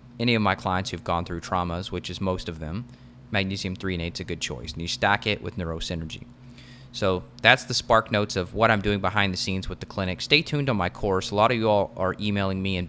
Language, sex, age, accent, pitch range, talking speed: English, male, 30-49, American, 90-110 Hz, 260 wpm